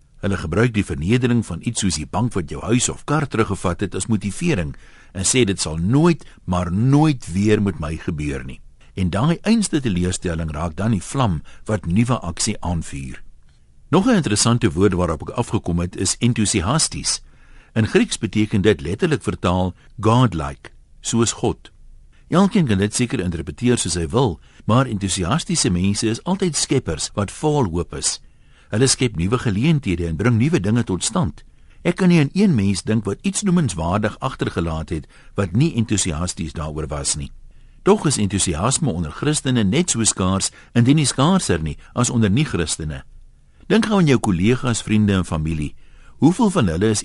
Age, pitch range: 60-79, 85-125 Hz